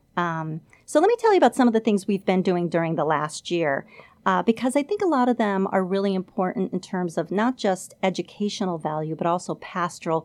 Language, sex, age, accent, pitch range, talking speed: English, female, 40-59, American, 170-210 Hz, 230 wpm